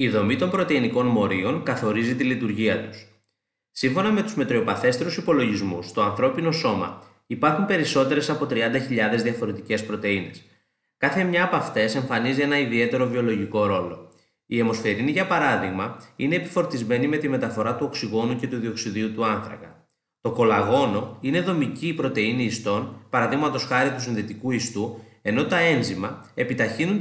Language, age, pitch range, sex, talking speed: Greek, 20-39, 110-140 Hz, male, 140 wpm